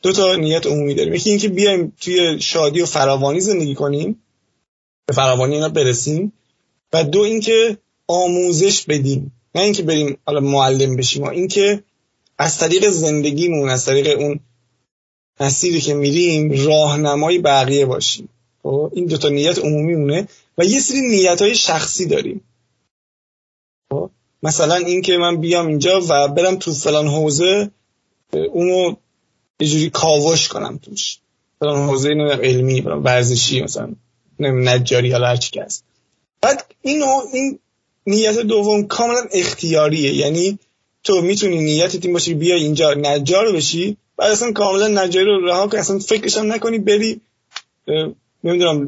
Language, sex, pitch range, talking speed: Persian, male, 145-195 Hz, 135 wpm